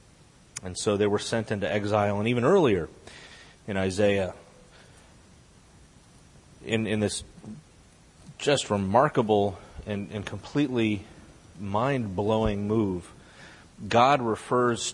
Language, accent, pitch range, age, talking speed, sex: English, American, 95-120 Hz, 30-49, 100 wpm, male